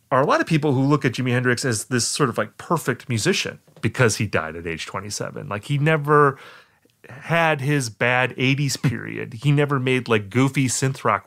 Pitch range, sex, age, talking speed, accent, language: 110-145 Hz, male, 30-49, 200 wpm, American, English